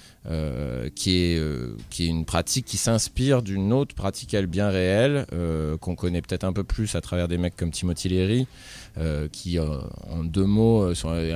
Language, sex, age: French, male, 20-39